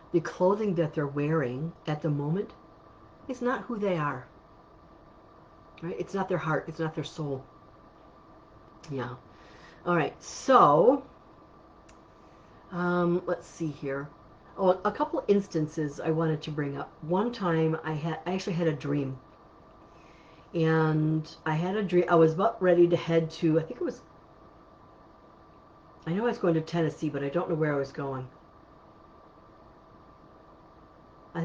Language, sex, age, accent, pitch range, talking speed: English, female, 50-69, American, 150-175 Hz, 155 wpm